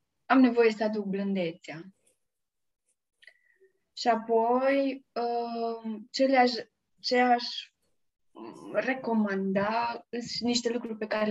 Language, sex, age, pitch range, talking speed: Romanian, female, 20-39, 200-250 Hz, 85 wpm